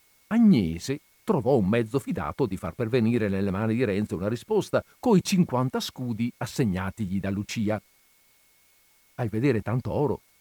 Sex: male